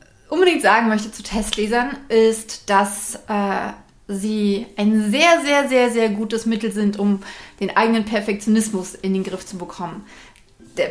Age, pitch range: 30-49, 205-255 Hz